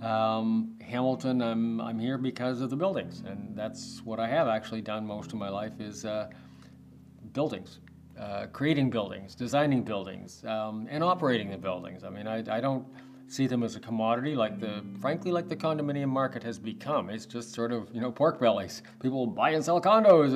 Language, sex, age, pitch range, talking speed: English, male, 40-59, 110-145 Hz, 190 wpm